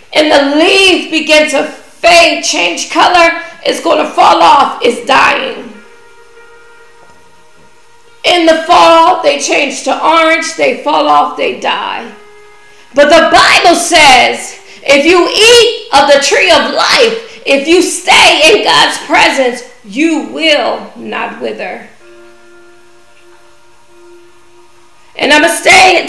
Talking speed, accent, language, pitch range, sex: 125 wpm, American, English, 265-360 Hz, female